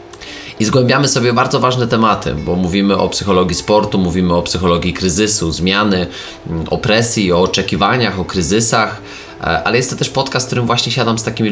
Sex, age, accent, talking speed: male, 20-39, native, 165 wpm